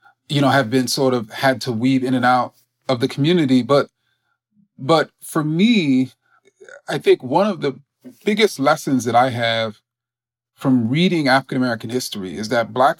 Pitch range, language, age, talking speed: 125-155 Hz, English, 30-49, 165 wpm